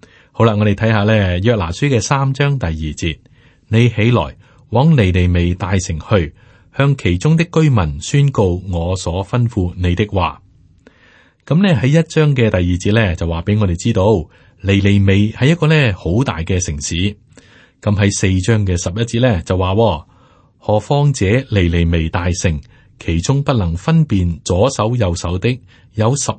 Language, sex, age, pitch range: Chinese, male, 30-49, 90-120 Hz